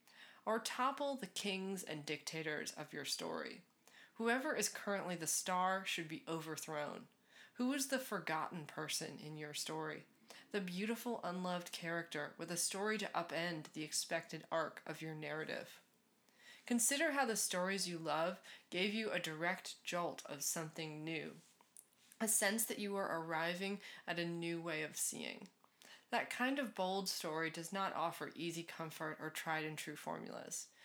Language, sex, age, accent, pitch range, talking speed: English, female, 20-39, American, 160-205 Hz, 160 wpm